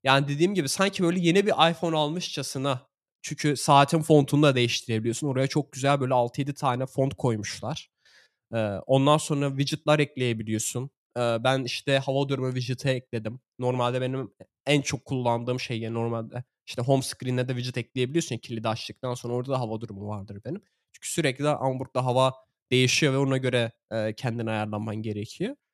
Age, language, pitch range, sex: 20-39, Turkish, 115-145 Hz, male